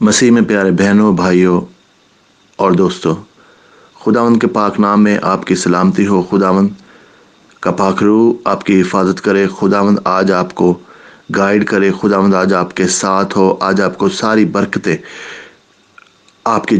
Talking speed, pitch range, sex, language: 130 wpm, 100-130 Hz, male, English